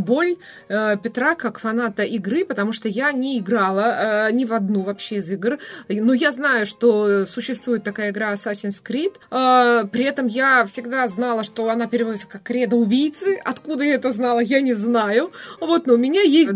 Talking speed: 170 wpm